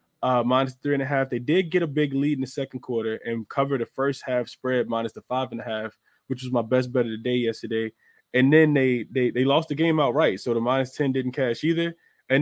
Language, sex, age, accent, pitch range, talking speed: English, male, 20-39, American, 115-140 Hz, 260 wpm